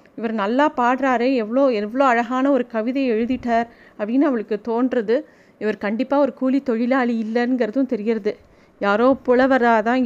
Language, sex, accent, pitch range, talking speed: Tamil, female, native, 220-260 Hz, 130 wpm